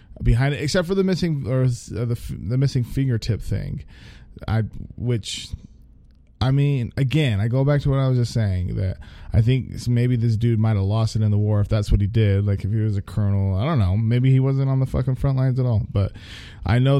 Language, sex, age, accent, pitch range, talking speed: English, male, 20-39, American, 105-130 Hz, 235 wpm